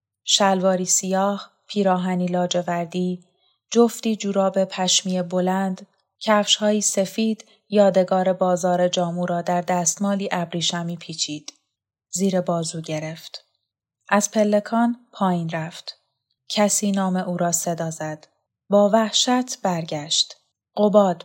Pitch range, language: 170-205 Hz, Persian